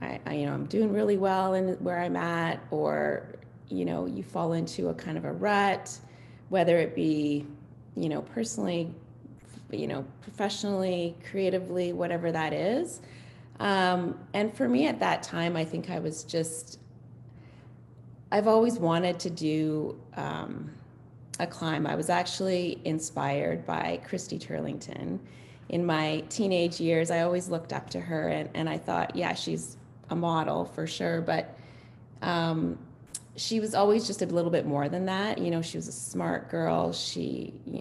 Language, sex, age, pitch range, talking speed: English, female, 20-39, 120-185 Hz, 165 wpm